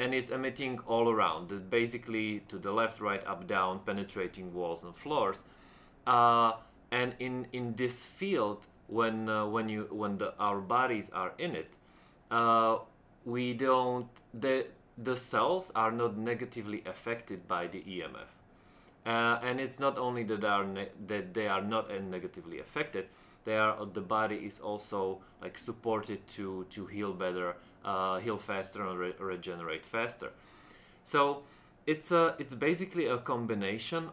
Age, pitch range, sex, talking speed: 30-49, 100-120 Hz, male, 155 wpm